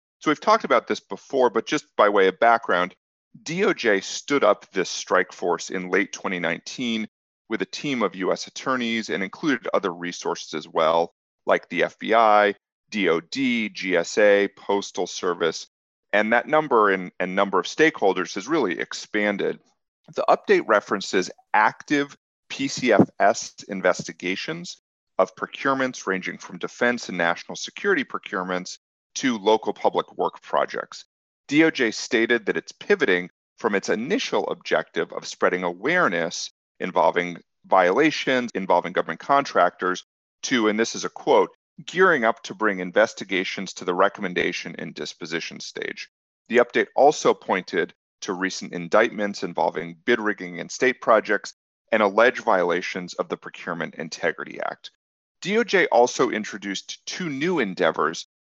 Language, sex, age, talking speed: English, male, 40-59, 135 wpm